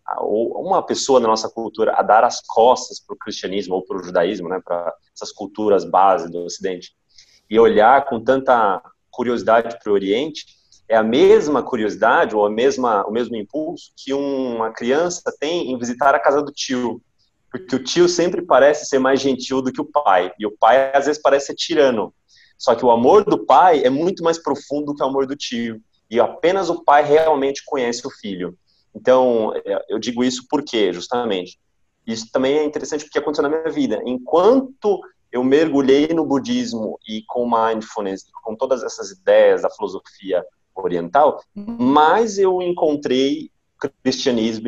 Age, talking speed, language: 30-49, 170 wpm, Portuguese